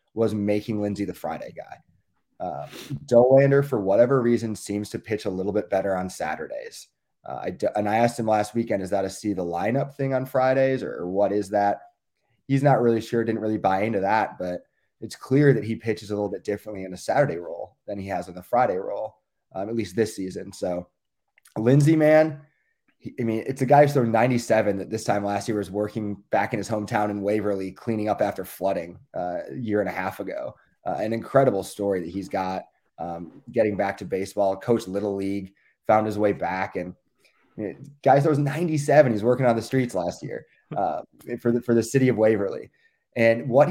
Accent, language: American, English